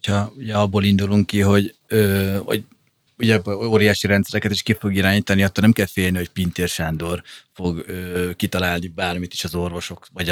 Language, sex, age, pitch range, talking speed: Hungarian, male, 30-49, 95-110 Hz, 155 wpm